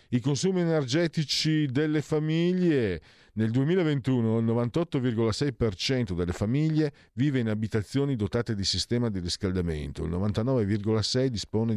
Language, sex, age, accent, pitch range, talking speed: Italian, male, 50-69, native, 85-120 Hz, 105 wpm